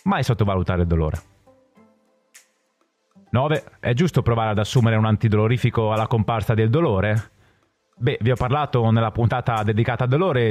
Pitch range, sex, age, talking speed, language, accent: 105-150 Hz, male, 30-49, 145 wpm, Italian, native